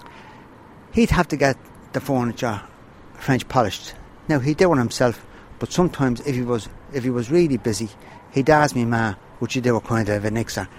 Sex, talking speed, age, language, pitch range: male, 195 wpm, 60-79, English, 115-145 Hz